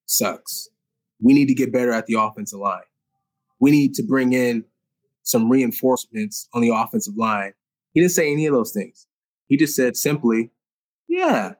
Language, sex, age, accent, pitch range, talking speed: English, male, 20-39, American, 130-190 Hz, 170 wpm